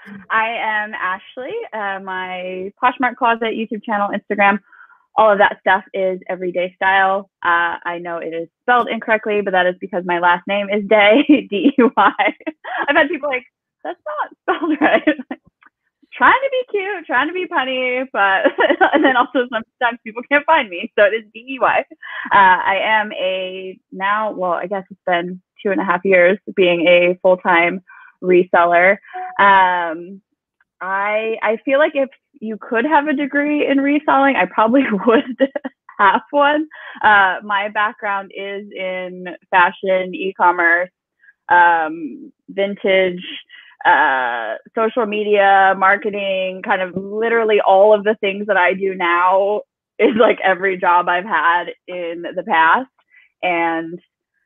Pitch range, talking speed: 185-265 Hz, 150 wpm